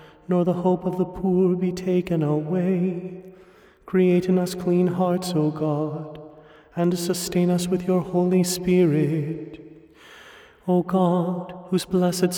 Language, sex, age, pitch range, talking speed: English, male, 30-49, 180-185 Hz, 130 wpm